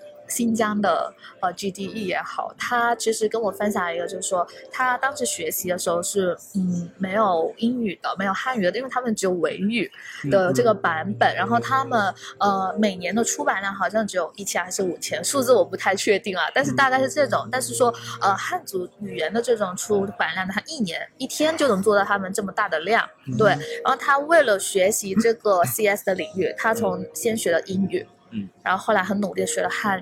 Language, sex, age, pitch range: Chinese, female, 20-39, 195-250 Hz